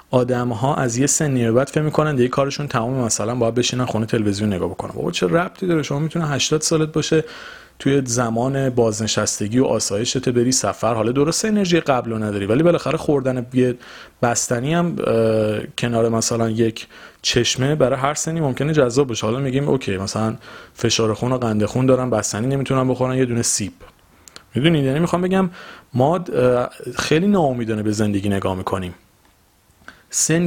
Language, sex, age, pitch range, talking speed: Persian, male, 30-49, 115-155 Hz, 165 wpm